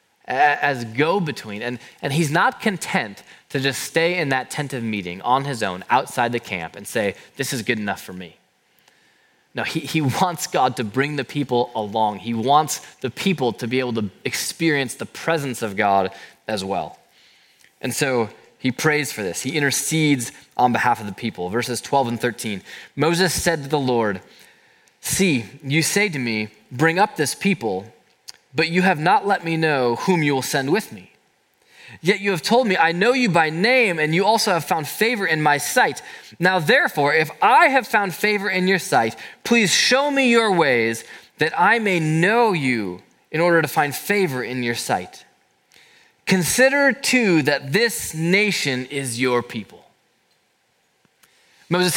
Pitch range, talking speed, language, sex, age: 120-185 Hz, 180 wpm, English, male, 20-39